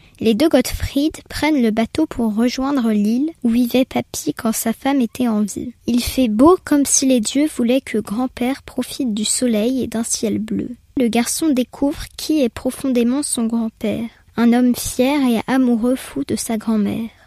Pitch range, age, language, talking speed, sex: 225-275 Hz, 20-39, French, 180 wpm, female